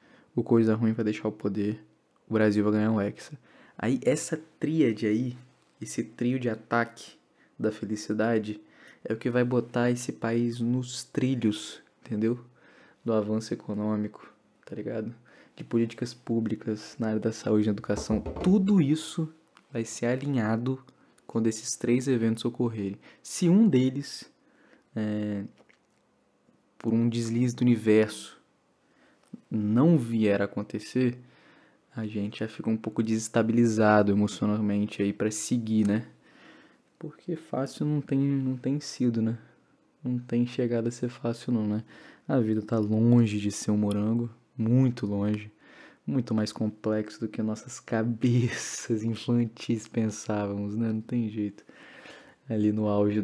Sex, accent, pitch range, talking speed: male, Brazilian, 105-125 Hz, 140 wpm